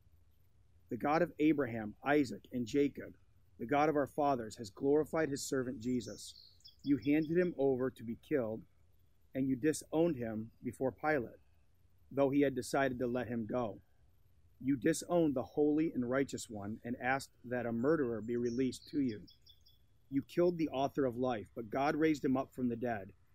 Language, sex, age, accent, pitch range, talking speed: English, male, 40-59, American, 100-140 Hz, 175 wpm